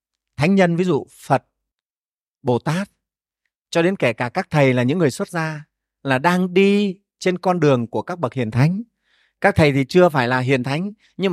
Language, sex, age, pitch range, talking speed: Vietnamese, male, 30-49, 140-205 Hz, 200 wpm